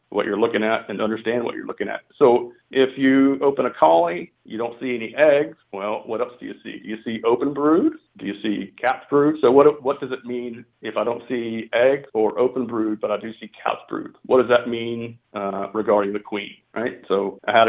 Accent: American